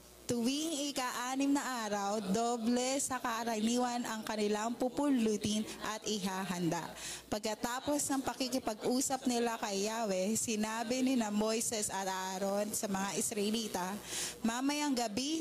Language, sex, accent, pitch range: Filipino, female, native, 210-245 Hz